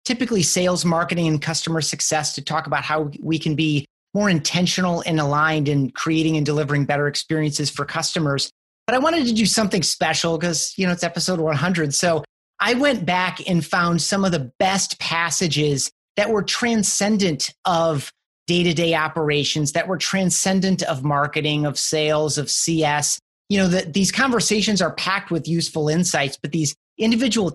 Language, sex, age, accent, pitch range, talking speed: English, male, 30-49, American, 155-185 Hz, 170 wpm